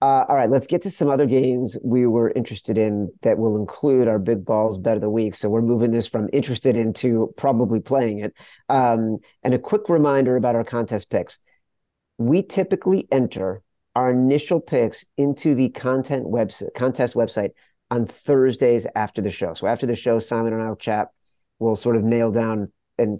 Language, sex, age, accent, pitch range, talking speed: English, male, 40-59, American, 110-130 Hz, 190 wpm